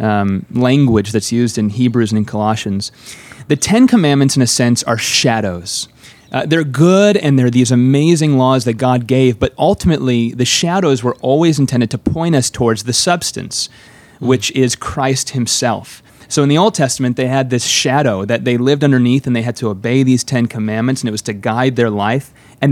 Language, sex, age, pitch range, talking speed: English, male, 30-49, 115-145 Hz, 195 wpm